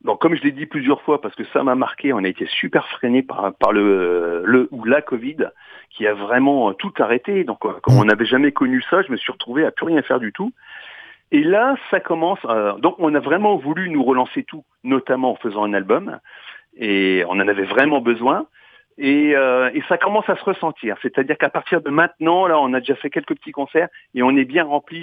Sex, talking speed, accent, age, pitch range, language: male, 230 wpm, French, 40-59, 120-170 Hz, French